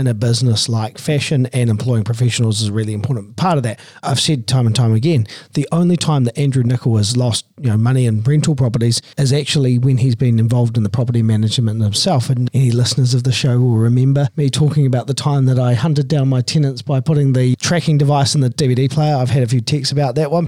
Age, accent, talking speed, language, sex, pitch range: 40-59, Australian, 240 wpm, English, male, 125-160 Hz